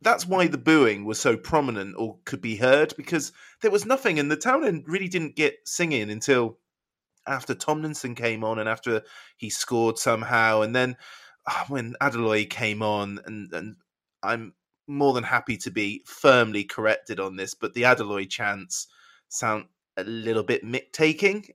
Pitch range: 110-160 Hz